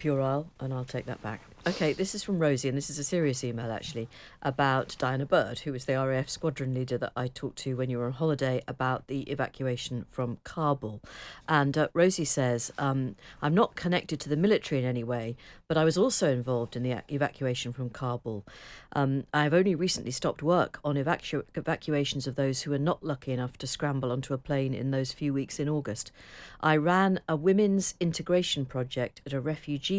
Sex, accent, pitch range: female, British, 130-155 Hz